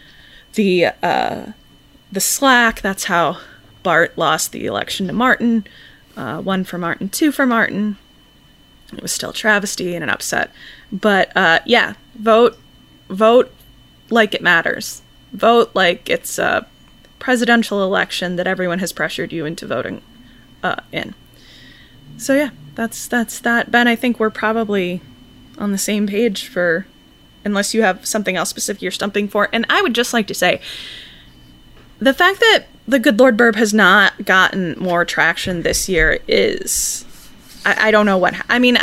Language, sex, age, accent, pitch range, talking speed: English, female, 20-39, American, 190-230 Hz, 160 wpm